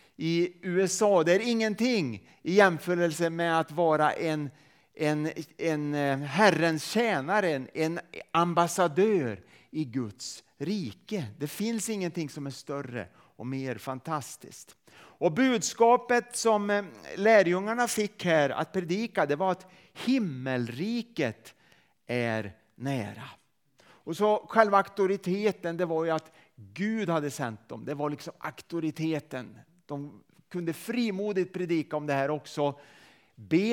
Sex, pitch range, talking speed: male, 150-200 Hz, 120 wpm